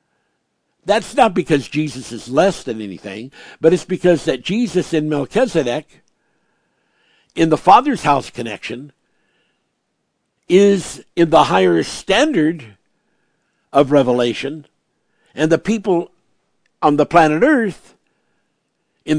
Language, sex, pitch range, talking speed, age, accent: English, male, 135-170 Hz, 110 wpm, 60-79, American